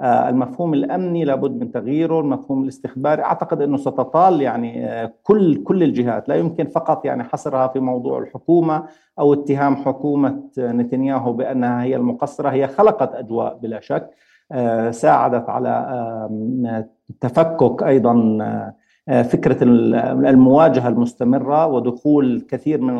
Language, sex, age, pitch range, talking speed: Arabic, male, 50-69, 125-150 Hz, 115 wpm